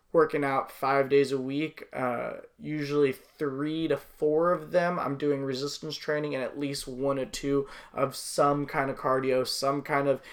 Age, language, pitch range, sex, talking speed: 20-39, English, 130-150 Hz, male, 180 wpm